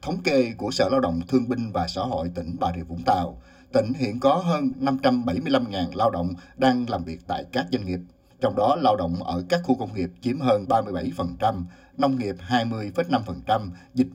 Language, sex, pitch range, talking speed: Vietnamese, male, 90-130 Hz, 195 wpm